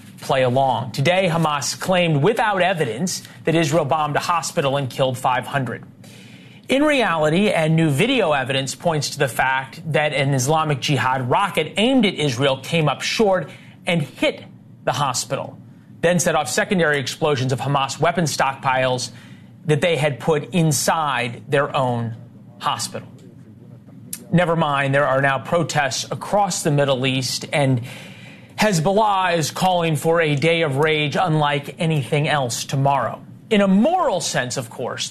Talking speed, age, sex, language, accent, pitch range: 145 wpm, 30-49, male, English, American, 140-175 Hz